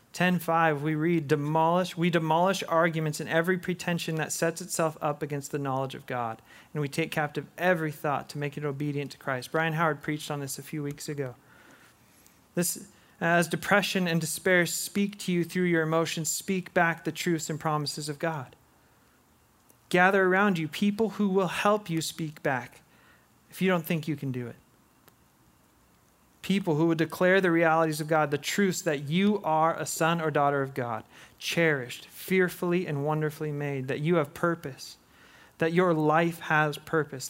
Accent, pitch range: American, 145-170 Hz